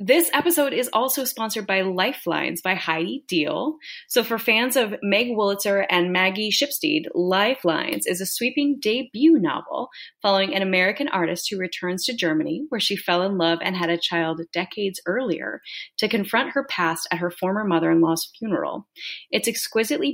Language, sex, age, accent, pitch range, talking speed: English, female, 30-49, American, 175-220 Hz, 165 wpm